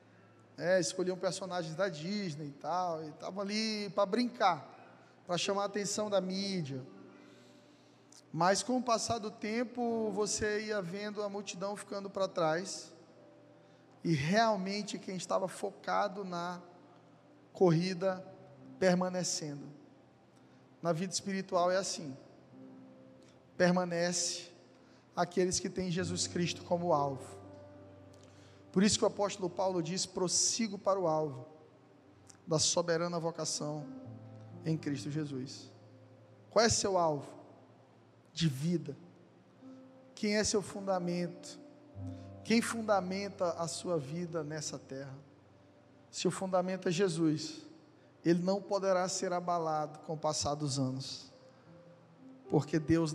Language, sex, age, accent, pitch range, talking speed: Portuguese, male, 20-39, Brazilian, 140-195 Hz, 115 wpm